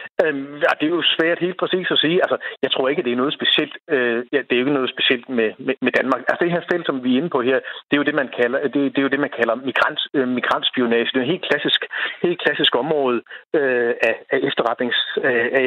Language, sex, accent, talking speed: Danish, male, native, 230 wpm